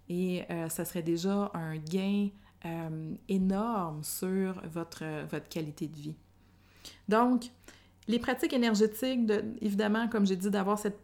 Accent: Canadian